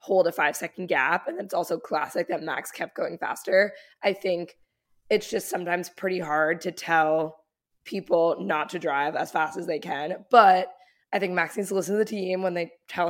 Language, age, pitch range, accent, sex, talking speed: English, 20-39, 175-205 Hz, American, female, 205 wpm